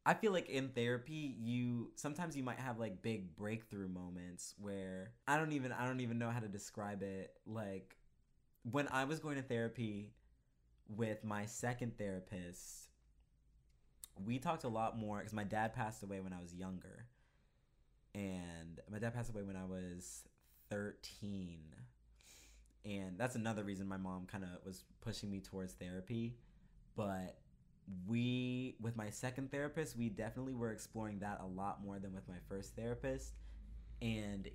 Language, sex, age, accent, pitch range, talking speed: English, male, 20-39, American, 95-115 Hz, 160 wpm